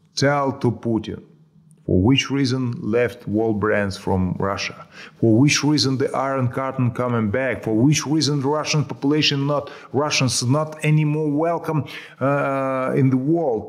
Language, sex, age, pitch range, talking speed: Dutch, male, 30-49, 110-155 Hz, 155 wpm